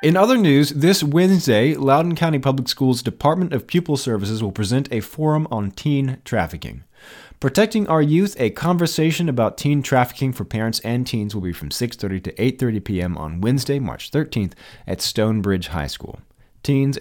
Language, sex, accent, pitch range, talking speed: English, male, American, 95-140 Hz, 170 wpm